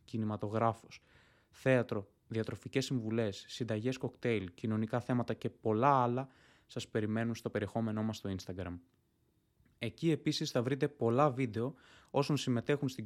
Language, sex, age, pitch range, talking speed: Greek, male, 20-39, 110-130 Hz, 125 wpm